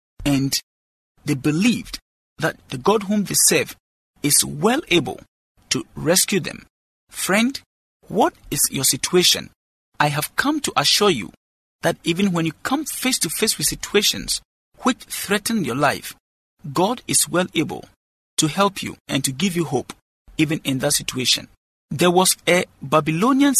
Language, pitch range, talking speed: English, 140-215 Hz, 155 wpm